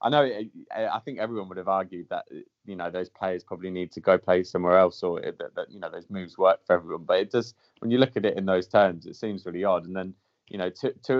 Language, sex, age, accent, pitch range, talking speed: English, male, 20-39, British, 90-100 Hz, 280 wpm